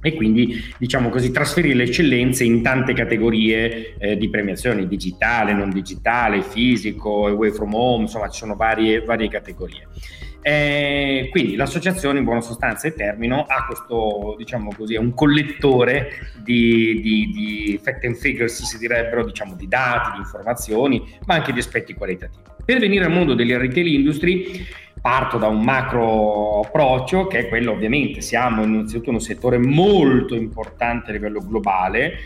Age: 40-59